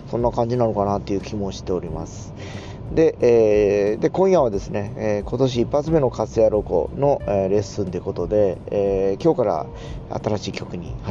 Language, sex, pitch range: Japanese, male, 100-135 Hz